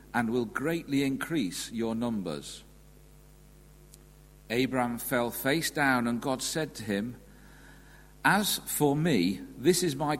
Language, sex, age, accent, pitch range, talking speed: English, male, 50-69, British, 120-155 Hz, 125 wpm